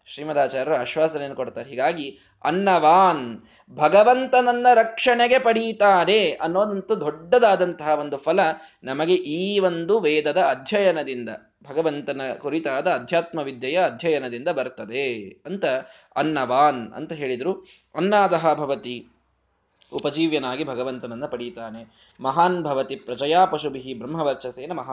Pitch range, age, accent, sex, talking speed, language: 140-220 Hz, 20-39, native, male, 90 wpm, Kannada